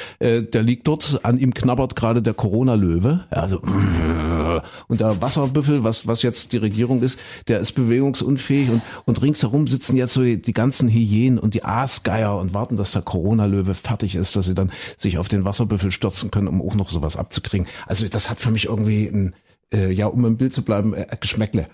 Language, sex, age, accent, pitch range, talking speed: German, male, 50-69, German, 105-130 Hz, 195 wpm